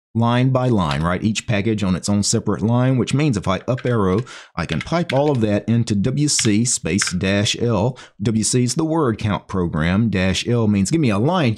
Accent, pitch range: American, 95-125 Hz